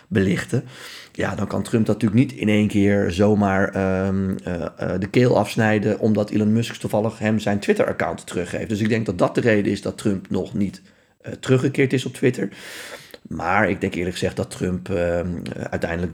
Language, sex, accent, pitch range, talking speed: Dutch, male, Dutch, 95-110 Hz, 195 wpm